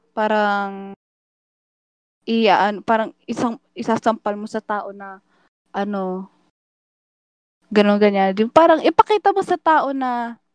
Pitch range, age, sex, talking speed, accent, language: 205-245 Hz, 20-39, female, 110 wpm, native, Filipino